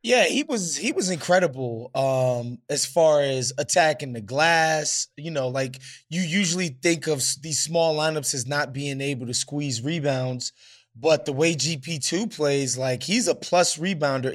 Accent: American